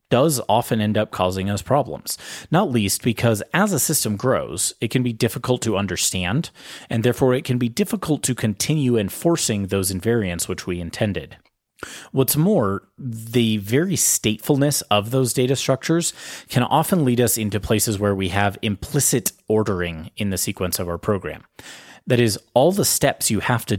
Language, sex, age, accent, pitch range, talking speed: English, male, 30-49, American, 105-130 Hz, 170 wpm